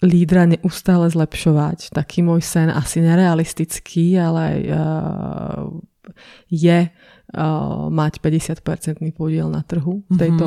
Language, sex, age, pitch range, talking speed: Slovak, female, 20-39, 160-175 Hz, 95 wpm